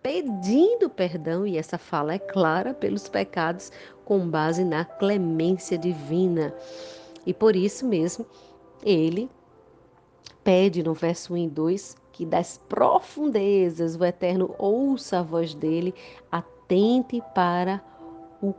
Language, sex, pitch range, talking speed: Portuguese, female, 165-200 Hz, 120 wpm